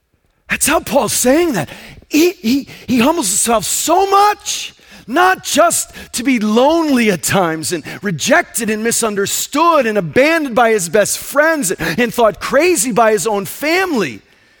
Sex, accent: male, American